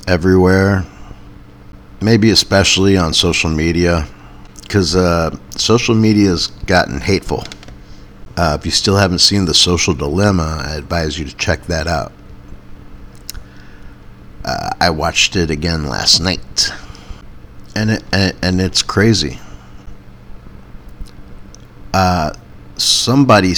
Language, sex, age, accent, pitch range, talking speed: English, male, 50-69, American, 80-105 Hz, 110 wpm